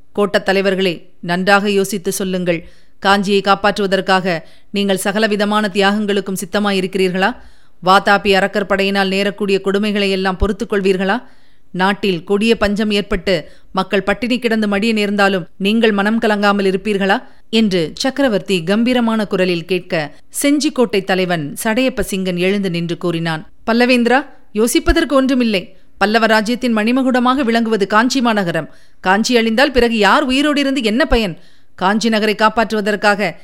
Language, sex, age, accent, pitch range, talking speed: Tamil, female, 30-49, native, 190-240 Hz, 110 wpm